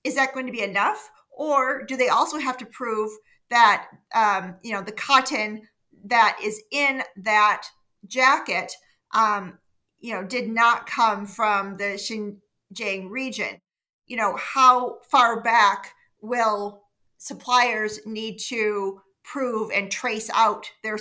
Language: English